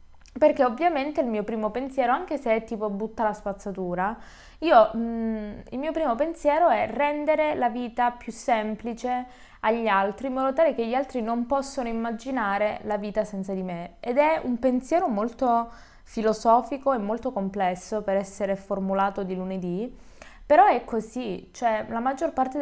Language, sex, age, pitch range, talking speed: Italian, female, 20-39, 200-245 Hz, 165 wpm